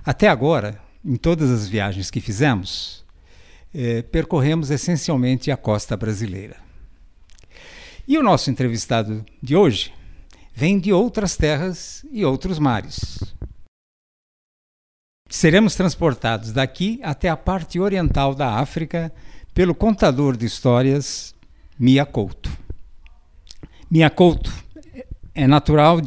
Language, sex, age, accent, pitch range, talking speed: Portuguese, male, 60-79, Brazilian, 115-155 Hz, 105 wpm